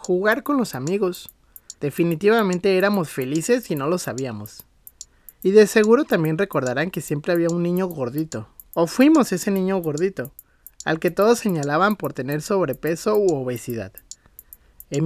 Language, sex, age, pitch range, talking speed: Spanish, male, 30-49, 155-210 Hz, 150 wpm